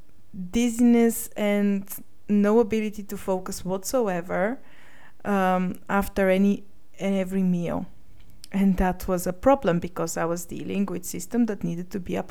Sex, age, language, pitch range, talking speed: female, 20-39, English, 185-225 Hz, 140 wpm